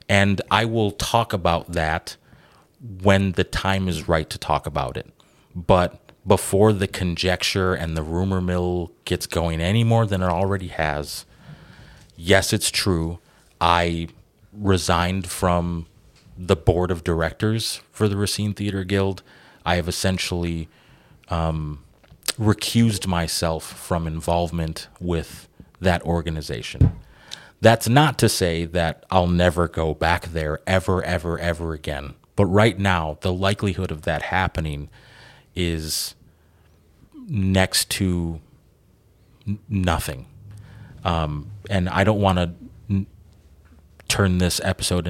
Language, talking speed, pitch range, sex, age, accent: English, 120 wpm, 80-100 Hz, male, 30-49, American